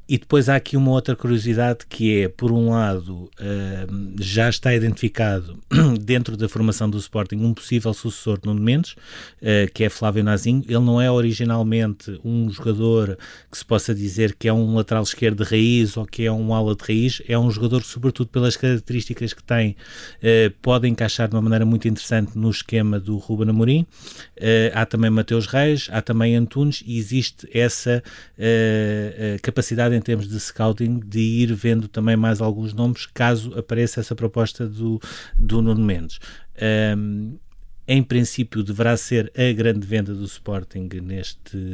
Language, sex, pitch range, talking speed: Portuguese, male, 105-120 Hz, 165 wpm